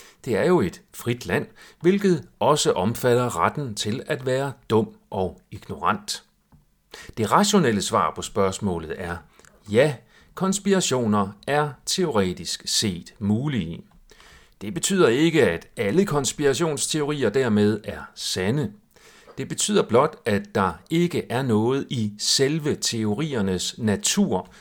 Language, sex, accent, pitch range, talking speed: Danish, male, native, 105-160 Hz, 120 wpm